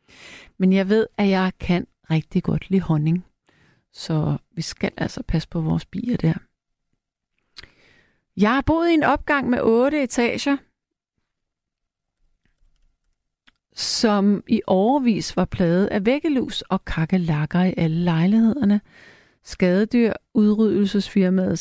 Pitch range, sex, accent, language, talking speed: 175-235 Hz, female, native, Danish, 115 wpm